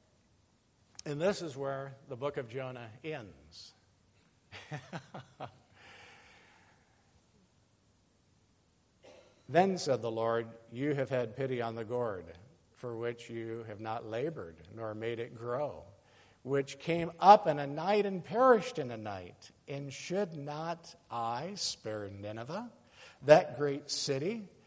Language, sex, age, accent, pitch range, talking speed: English, male, 50-69, American, 115-155 Hz, 120 wpm